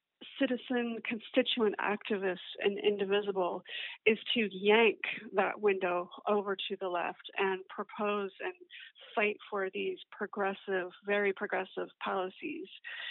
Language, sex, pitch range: English, female, 190-240 Hz